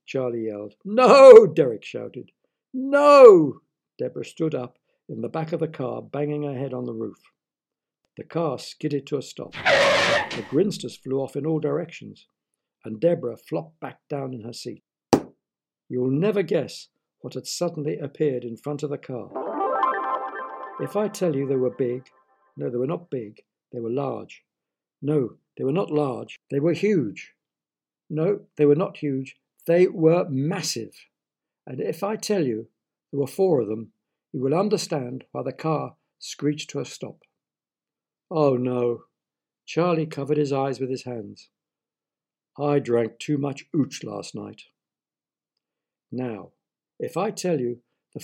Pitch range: 125-165 Hz